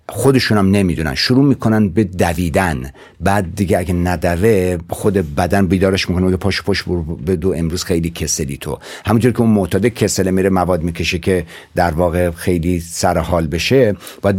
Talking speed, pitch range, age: 165 wpm, 85-115 Hz, 60-79